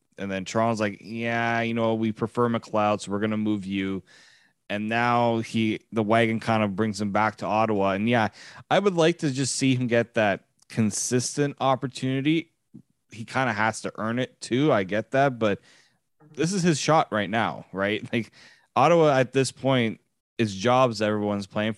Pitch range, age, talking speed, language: 105-130 Hz, 20-39, 190 wpm, English